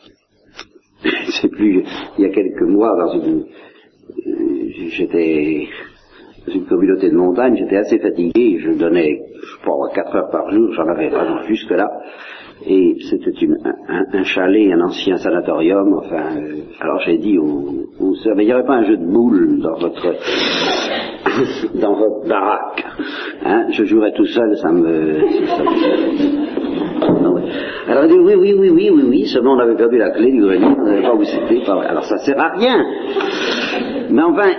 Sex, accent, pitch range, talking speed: male, French, 315-360 Hz, 180 wpm